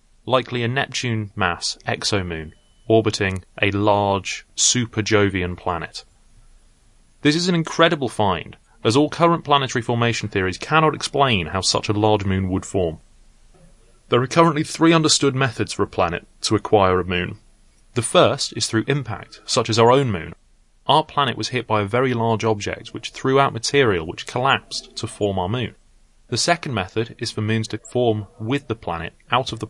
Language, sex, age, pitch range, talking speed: English, male, 30-49, 100-125 Hz, 170 wpm